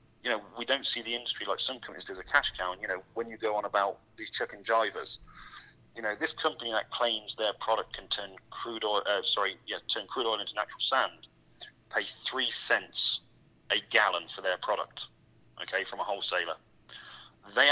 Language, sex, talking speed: English, male, 200 wpm